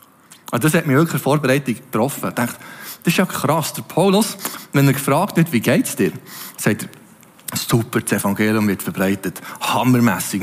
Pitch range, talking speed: 170-245 Hz, 175 wpm